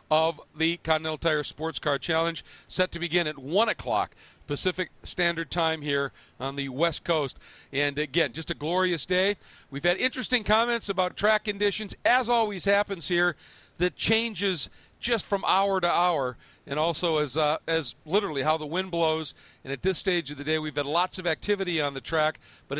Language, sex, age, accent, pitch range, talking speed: English, male, 40-59, American, 145-185 Hz, 185 wpm